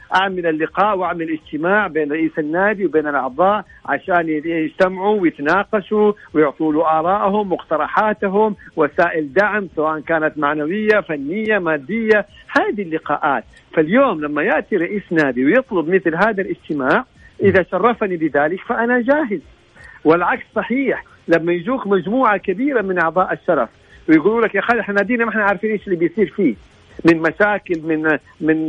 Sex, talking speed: male, 135 wpm